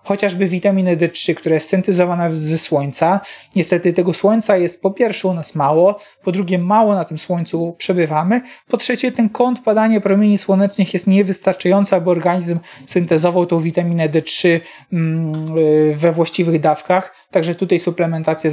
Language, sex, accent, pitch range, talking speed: Polish, male, native, 160-195 Hz, 145 wpm